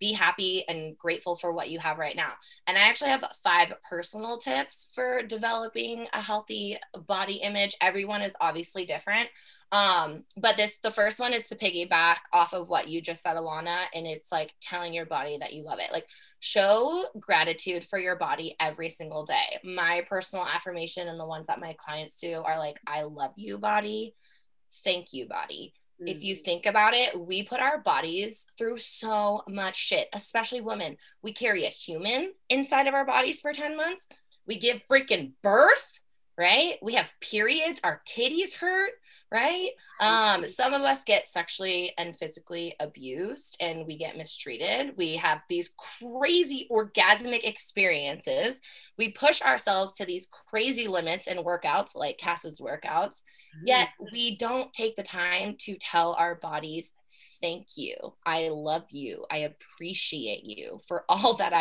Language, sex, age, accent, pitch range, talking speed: English, female, 20-39, American, 170-240 Hz, 165 wpm